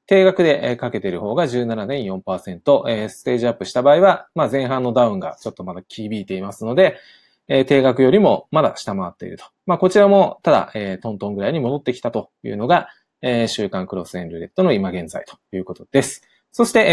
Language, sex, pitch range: Japanese, male, 105-150 Hz